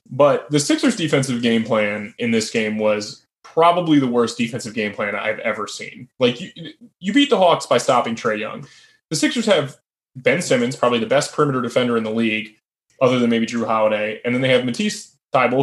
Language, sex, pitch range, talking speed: English, male, 120-170 Hz, 205 wpm